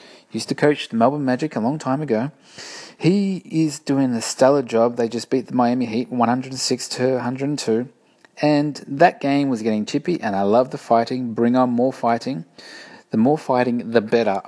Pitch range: 105-145 Hz